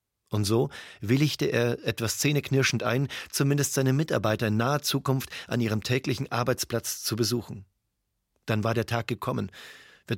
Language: German